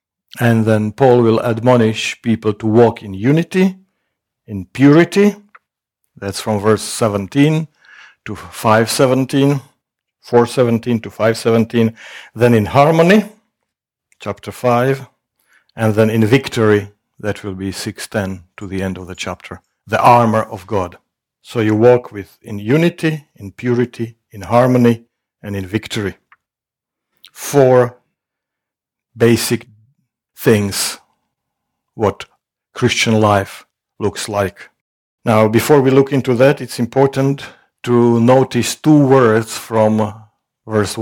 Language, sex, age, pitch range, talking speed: English, male, 50-69, 110-135 Hz, 115 wpm